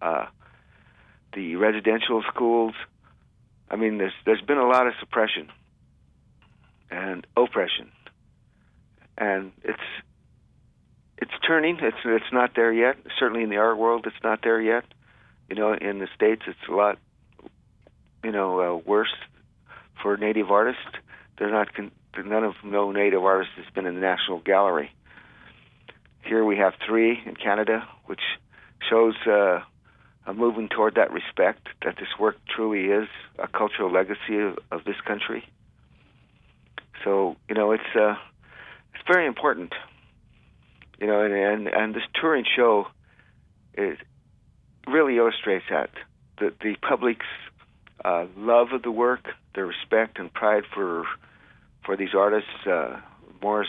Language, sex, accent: English, male, American